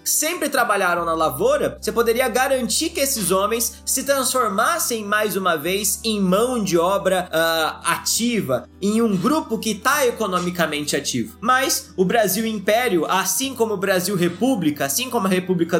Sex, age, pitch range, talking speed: male, 20-39, 180-235 Hz, 155 wpm